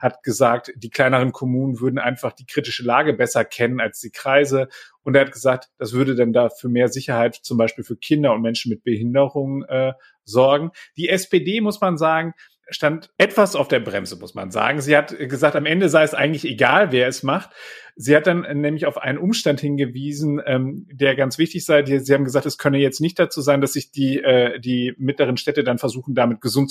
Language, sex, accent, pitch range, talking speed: German, male, German, 115-145 Hz, 205 wpm